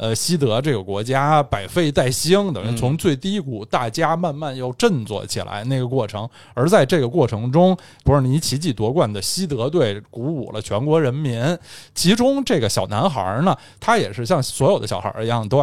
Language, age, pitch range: Chinese, 20-39, 115-175 Hz